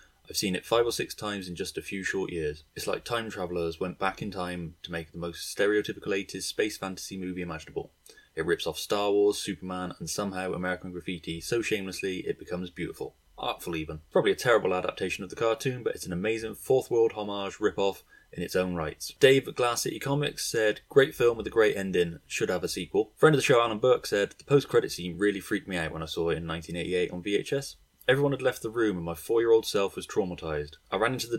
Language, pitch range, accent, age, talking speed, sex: English, 90-130 Hz, British, 20-39, 230 wpm, male